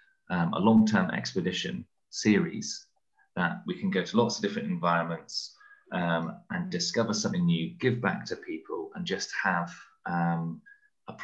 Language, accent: English, British